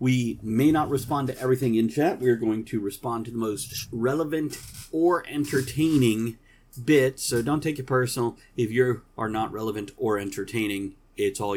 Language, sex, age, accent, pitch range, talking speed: English, male, 40-59, American, 110-150 Hz, 175 wpm